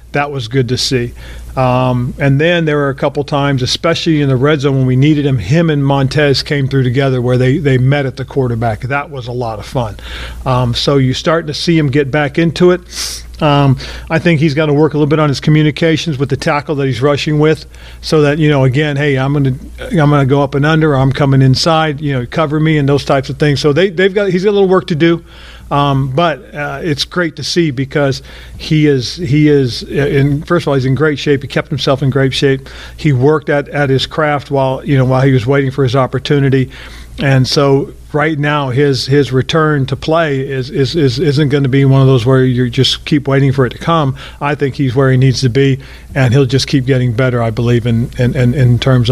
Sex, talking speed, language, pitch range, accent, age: male, 245 wpm, English, 130-150 Hz, American, 40-59